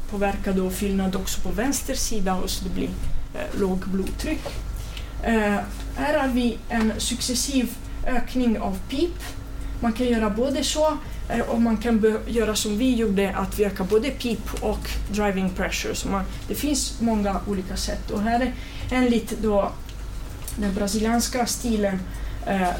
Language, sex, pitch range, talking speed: Swedish, female, 200-245 Hz, 160 wpm